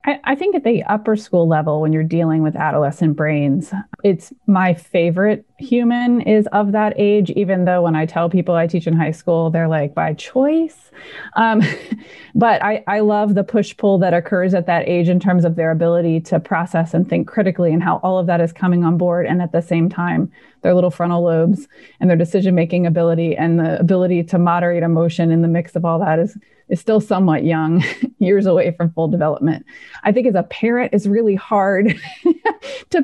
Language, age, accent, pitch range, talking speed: English, 20-39, American, 170-210 Hz, 205 wpm